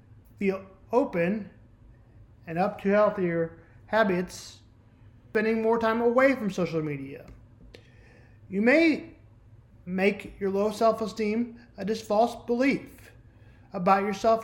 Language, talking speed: English, 110 wpm